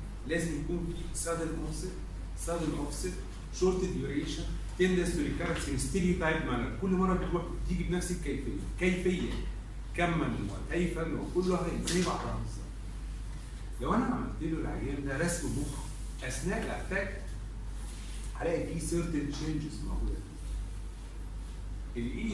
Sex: male